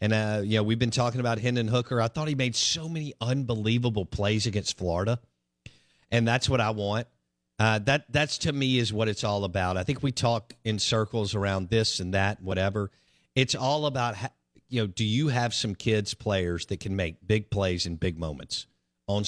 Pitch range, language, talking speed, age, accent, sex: 90-120 Hz, English, 210 wpm, 50-69, American, male